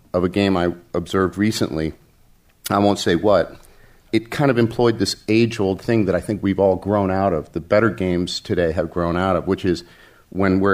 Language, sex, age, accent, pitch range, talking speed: English, male, 40-59, American, 90-115 Hz, 200 wpm